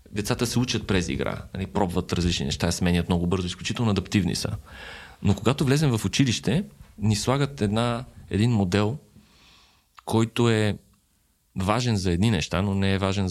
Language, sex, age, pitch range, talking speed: Bulgarian, male, 30-49, 95-120 Hz, 155 wpm